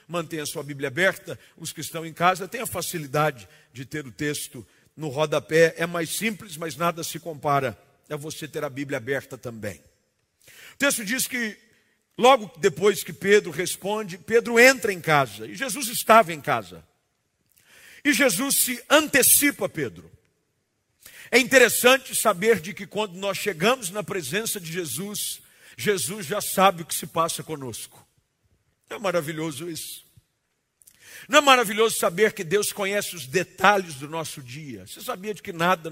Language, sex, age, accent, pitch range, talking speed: Portuguese, male, 50-69, Brazilian, 150-215 Hz, 160 wpm